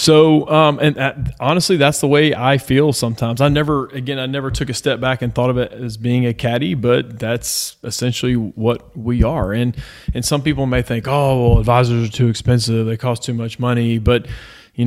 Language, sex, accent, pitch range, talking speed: English, male, American, 115-130 Hz, 215 wpm